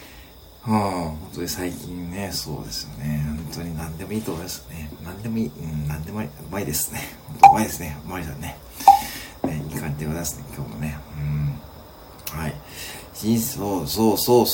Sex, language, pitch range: male, Japanese, 75-110 Hz